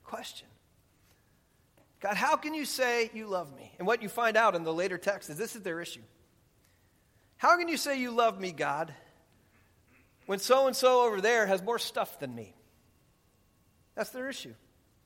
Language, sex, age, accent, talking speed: English, male, 40-59, American, 170 wpm